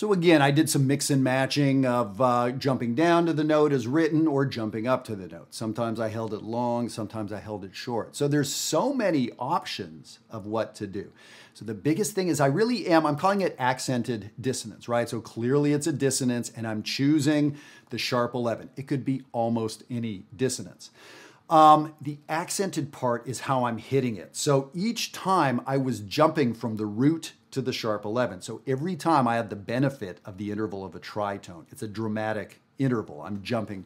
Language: English